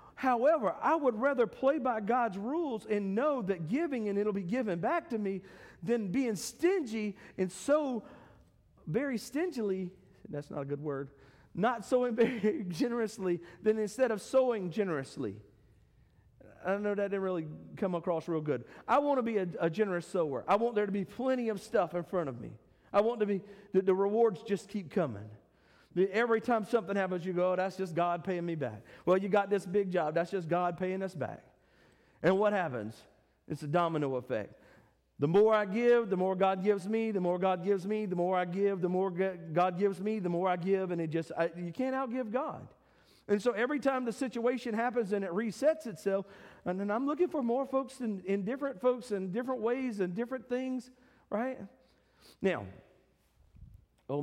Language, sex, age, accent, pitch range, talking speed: English, male, 40-59, American, 180-240 Hz, 195 wpm